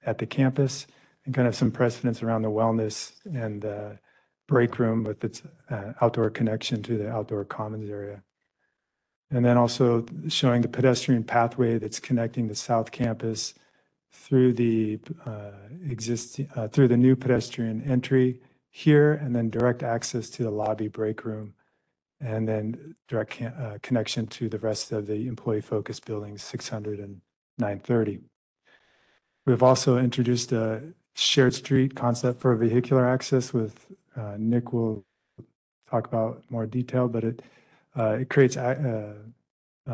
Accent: American